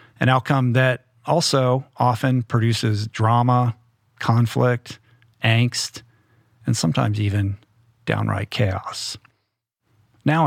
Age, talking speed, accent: 50-69, 85 wpm, American